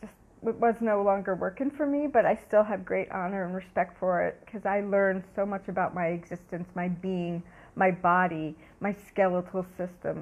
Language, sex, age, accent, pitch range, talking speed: English, female, 50-69, American, 185-230 Hz, 190 wpm